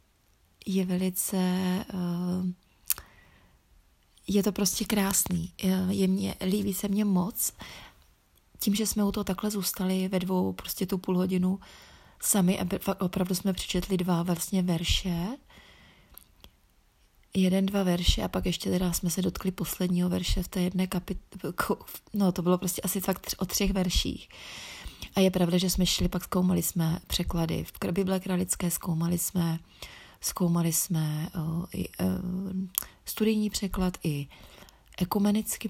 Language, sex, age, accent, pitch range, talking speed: Czech, female, 30-49, native, 180-195 Hz, 135 wpm